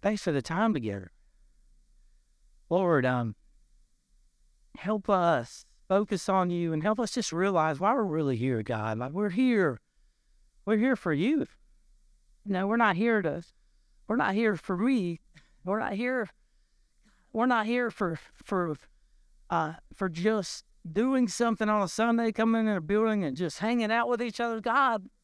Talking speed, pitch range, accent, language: 160 wpm, 165-230 Hz, American, English